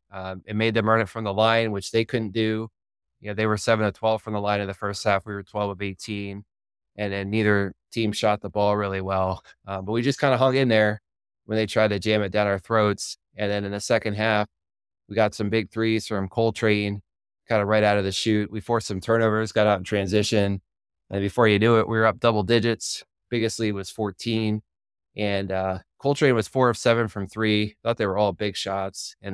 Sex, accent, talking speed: male, American, 240 wpm